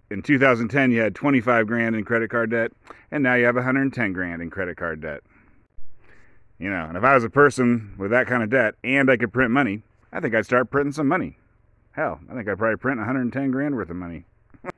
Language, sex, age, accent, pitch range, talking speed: English, male, 40-59, American, 95-120 Hz, 225 wpm